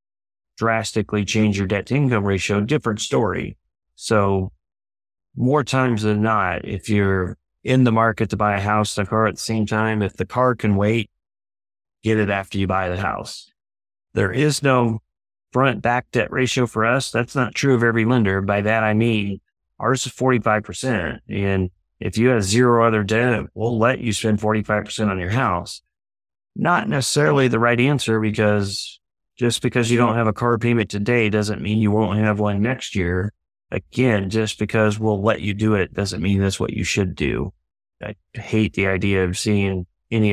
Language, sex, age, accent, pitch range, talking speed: English, male, 30-49, American, 100-115 Hz, 185 wpm